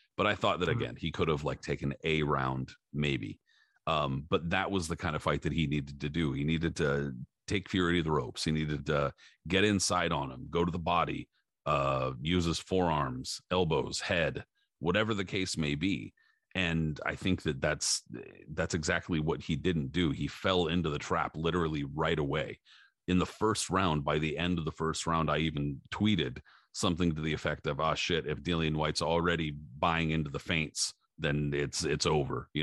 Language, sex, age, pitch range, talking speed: English, male, 40-59, 75-90 Hz, 205 wpm